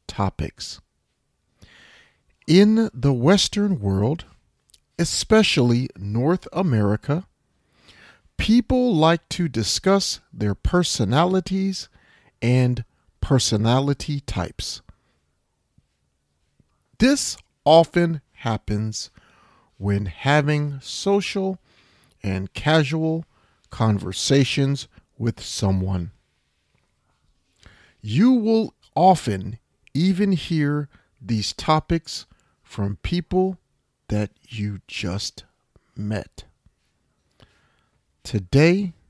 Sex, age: male, 40-59